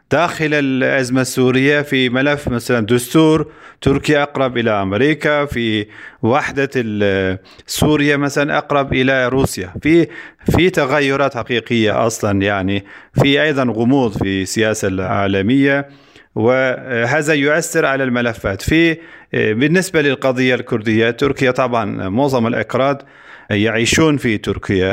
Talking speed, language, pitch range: 110 wpm, Arabic, 110-145 Hz